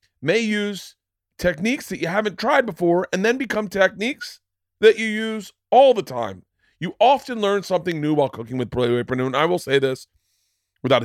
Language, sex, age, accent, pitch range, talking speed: English, male, 40-59, American, 115-170 Hz, 185 wpm